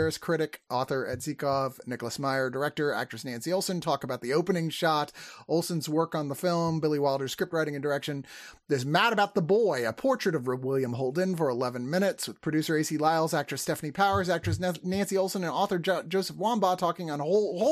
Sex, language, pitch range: male, English, 135-190 Hz